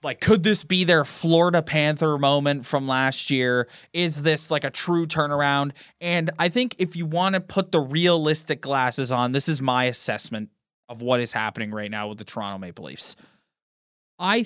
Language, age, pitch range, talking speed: English, 20-39, 125-160 Hz, 185 wpm